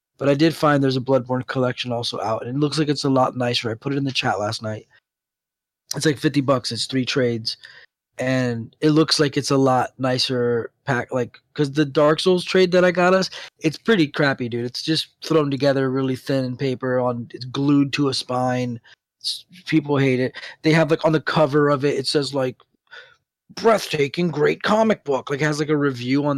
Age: 20-39